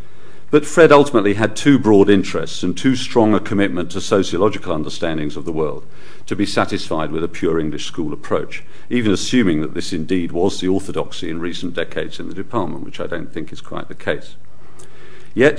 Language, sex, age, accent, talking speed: English, male, 50-69, British, 195 wpm